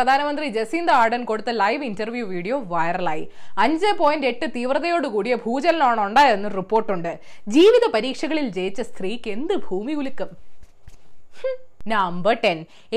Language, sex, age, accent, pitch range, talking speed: Malayalam, female, 20-39, native, 220-335 Hz, 110 wpm